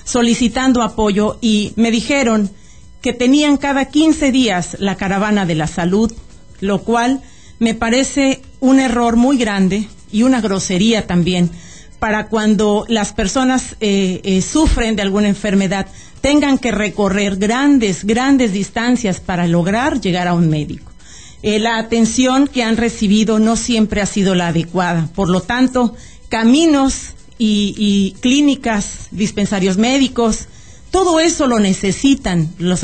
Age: 40-59